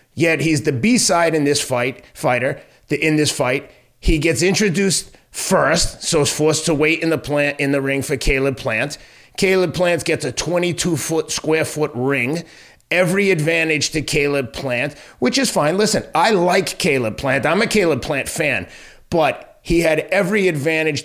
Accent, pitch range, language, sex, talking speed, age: American, 130-160 Hz, English, male, 180 wpm, 30-49